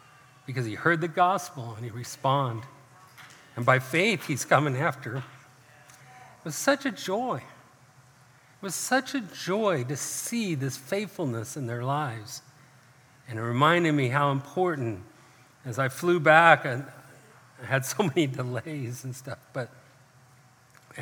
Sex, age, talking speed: male, 50-69, 145 wpm